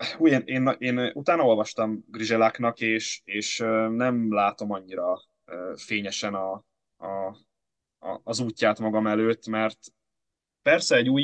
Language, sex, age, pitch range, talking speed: Hungarian, male, 20-39, 105-120 Hz, 125 wpm